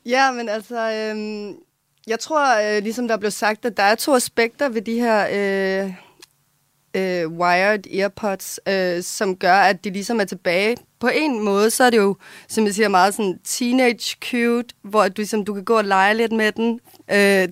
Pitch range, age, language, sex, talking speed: 185-220 Hz, 20-39, Danish, female, 195 wpm